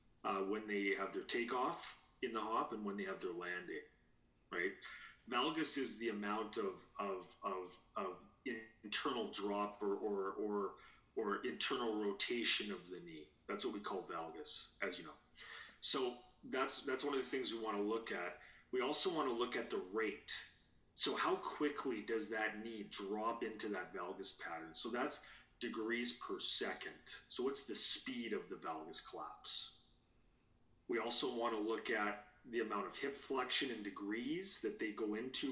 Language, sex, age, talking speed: English, male, 30-49, 175 wpm